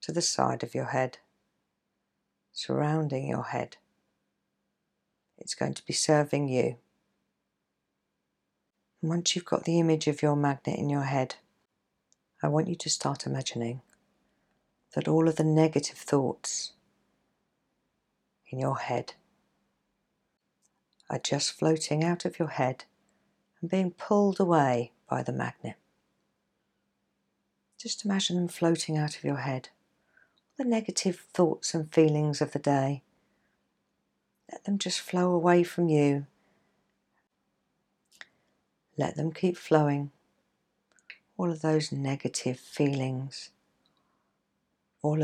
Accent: British